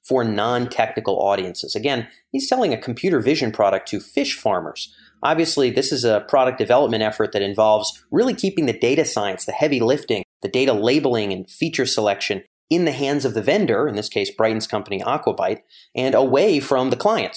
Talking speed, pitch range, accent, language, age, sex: 185 wpm, 110-145 Hz, American, English, 30-49, male